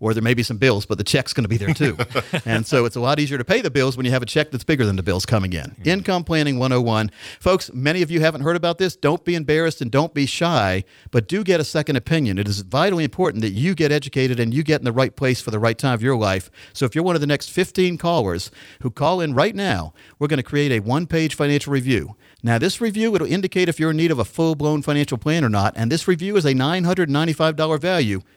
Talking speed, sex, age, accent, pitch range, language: 270 wpm, male, 50-69, American, 125-185 Hz, English